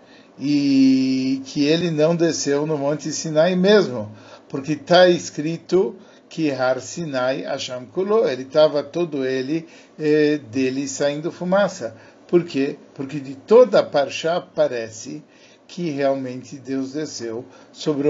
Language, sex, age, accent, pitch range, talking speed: Portuguese, male, 50-69, Brazilian, 135-170 Hz, 115 wpm